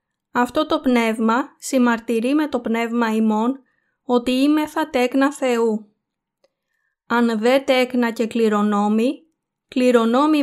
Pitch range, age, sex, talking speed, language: 230-265 Hz, 20-39, female, 110 wpm, Greek